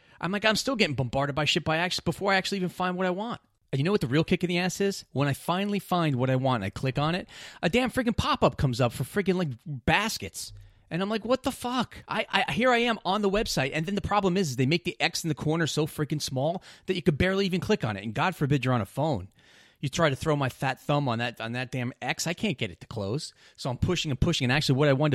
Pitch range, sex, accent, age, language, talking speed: 110-170 Hz, male, American, 30-49, English, 300 wpm